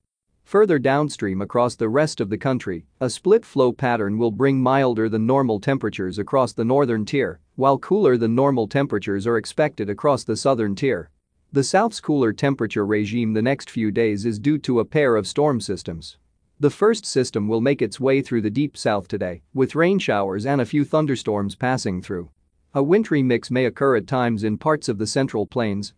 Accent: American